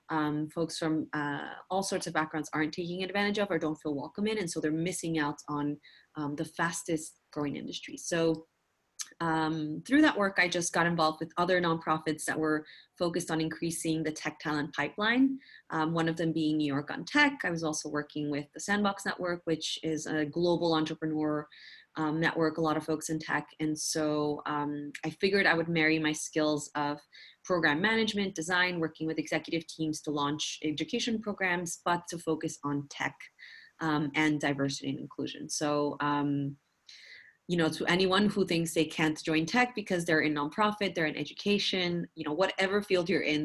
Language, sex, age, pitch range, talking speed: English, female, 30-49, 150-175 Hz, 190 wpm